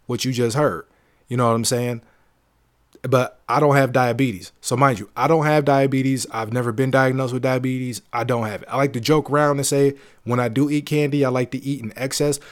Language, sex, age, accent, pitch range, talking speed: English, male, 20-39, American, 120-140 Hz, 235 wpm